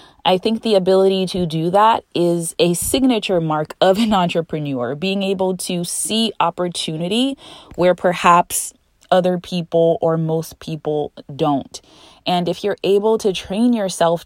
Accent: American